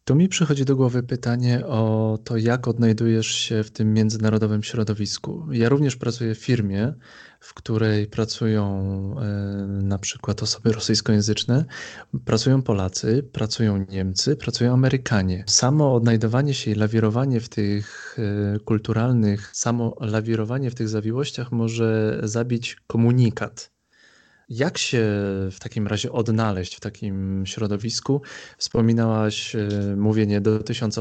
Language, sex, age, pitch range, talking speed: Polish, male, 20-39, 105-125 Hz, 120 wpm